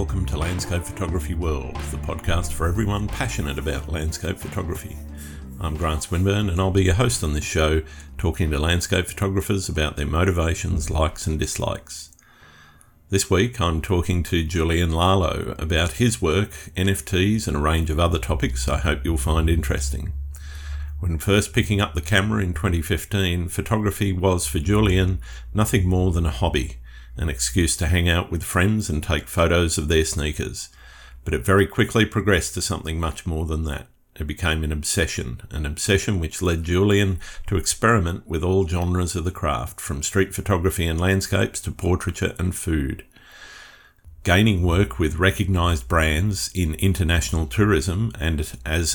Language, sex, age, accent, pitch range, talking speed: English, male, 50-69, Australian, 80-95 Hz, 165 wpm